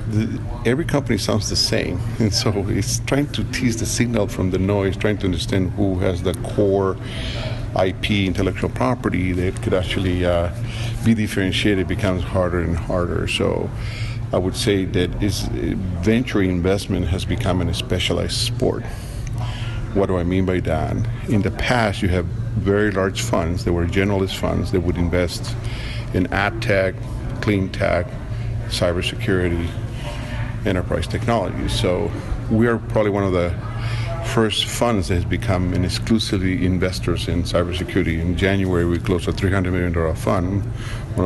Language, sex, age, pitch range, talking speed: English, male, 50-69, 95-115 Hz, 155 wpm